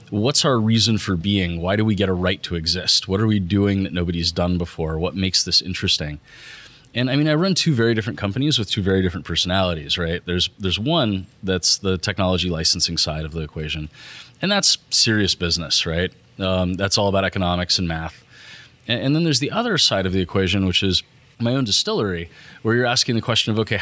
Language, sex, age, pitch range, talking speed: English, male, 30-49, 90-115 Hz, 215 wpm